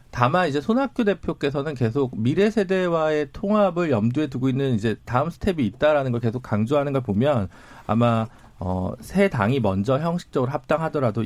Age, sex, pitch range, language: 40-59, male, 110-160 Hz, Korean